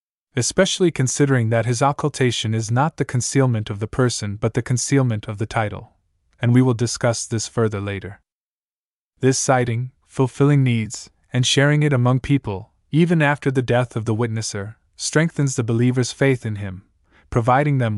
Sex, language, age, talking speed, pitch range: male, Arabic, 20-39, 165 wpm, 110-135 Hz